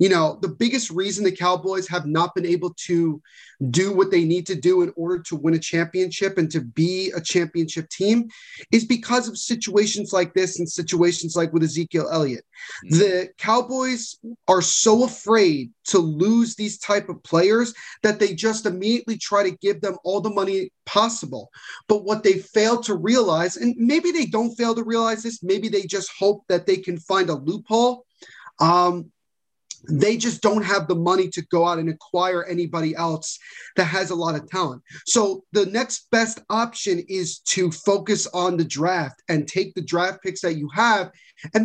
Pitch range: 175-220 Hz